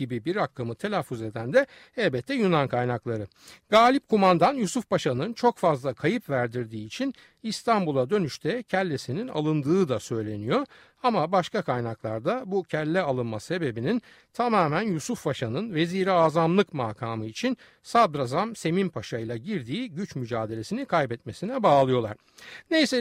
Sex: male